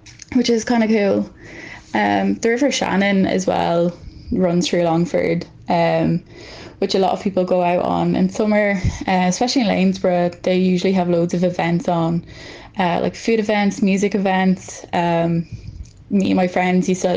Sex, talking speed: female, 165 wpm